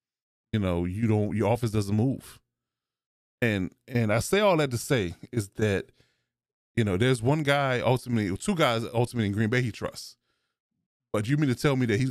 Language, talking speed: English, 200 wpm